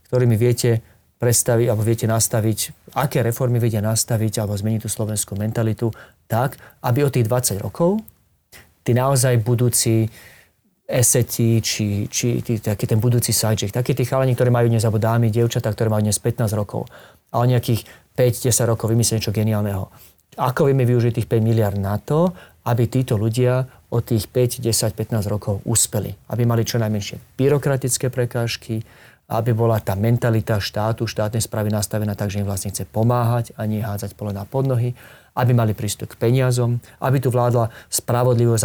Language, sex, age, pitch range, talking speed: Slovak, male, 40-59, 105-120 Hz, 160 wpm